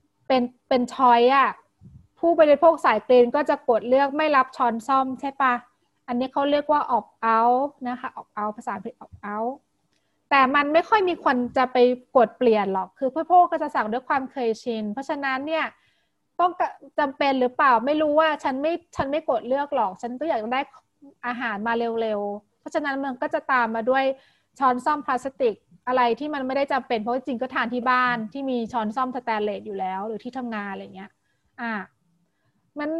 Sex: female